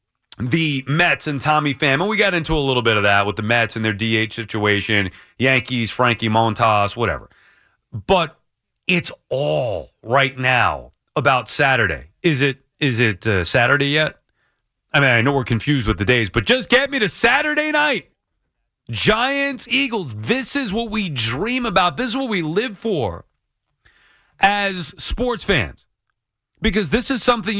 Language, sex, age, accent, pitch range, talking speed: English, male, 30-49, American, 115-190 Hz, 165 wpm